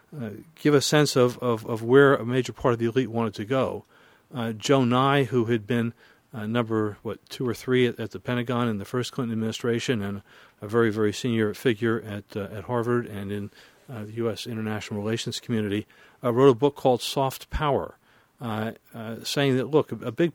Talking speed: 205 wpm